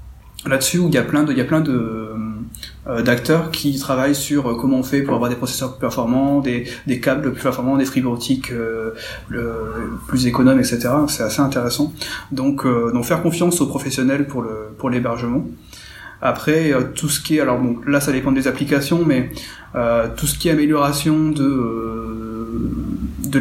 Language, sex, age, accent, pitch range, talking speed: French, male, 30-49, French, 120-145 Hz, 190 wpm